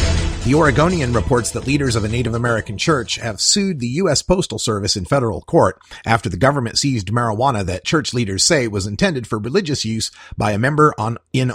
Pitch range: 110-140 Hz